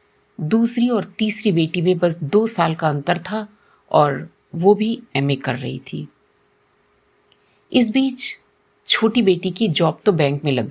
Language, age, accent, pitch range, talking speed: Hindi, 50-69, native, 155-210 Hz, 155 wpm